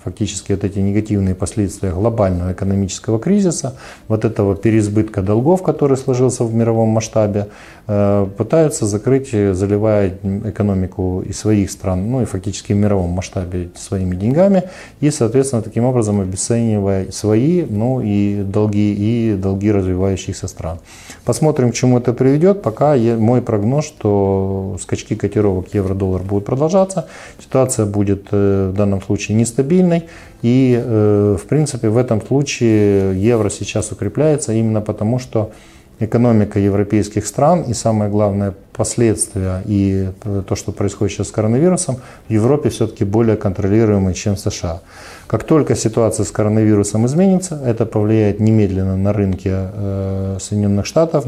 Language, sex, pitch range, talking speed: Ukrainian, male, 100-120 Hz, 130 wpm